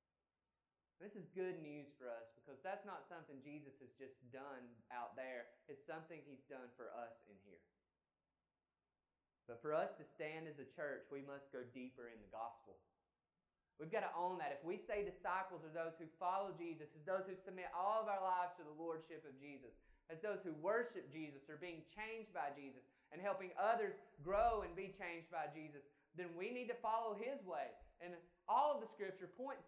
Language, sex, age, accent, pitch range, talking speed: English, male, 20-39, American, 155-215 Hz, 200 wpm